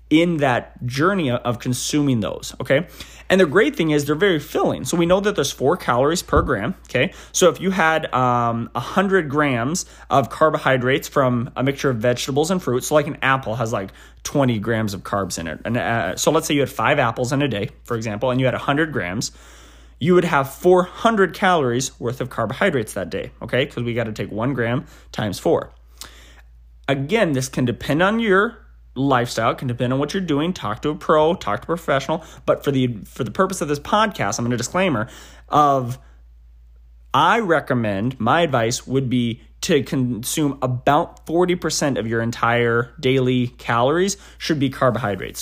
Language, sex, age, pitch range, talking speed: English, male, 20-39, 115-150 Hz, 195 wpm